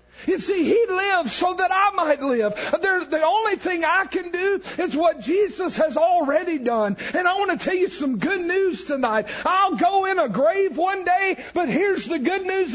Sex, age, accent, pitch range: male, 50-69, American, 230-350 Hz